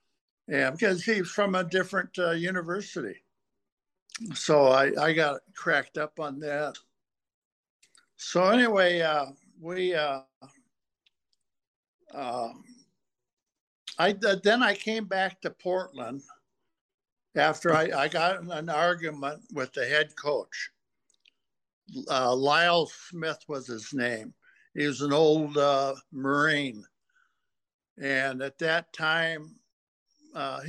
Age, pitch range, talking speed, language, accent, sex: 60-79, 140-180 Hz, 110 wpm, English, American, male